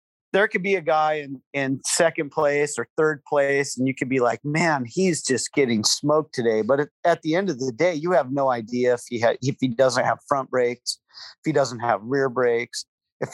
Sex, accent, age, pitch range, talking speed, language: male, American, 40-59, 140-190 Hz, 225 wpm, English